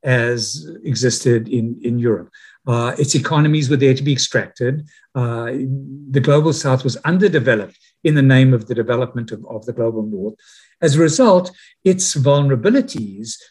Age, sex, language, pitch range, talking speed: 60-79, male, English, 125-165 Hz, 155 wpm